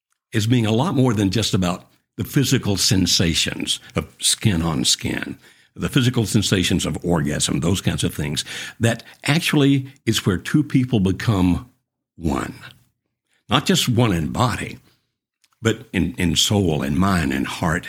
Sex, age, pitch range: male, 60-79, 85-115 Hz